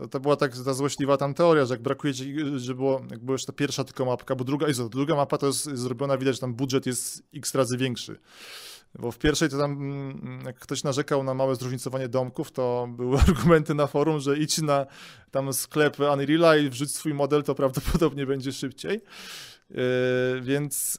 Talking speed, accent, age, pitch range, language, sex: 190 wpm, native, 20-39, 130-150 Hz, Polish, male